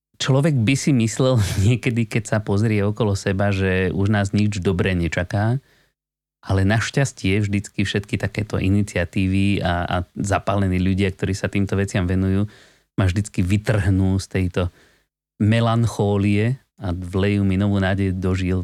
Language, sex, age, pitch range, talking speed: Slovak, male, 30-49, 95-120 Hz, 140 wpm